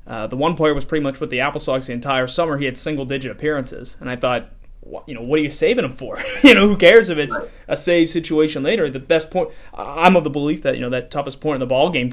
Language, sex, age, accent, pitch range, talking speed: English, male, 30-49, American, 125-155 Hz, 270 wpm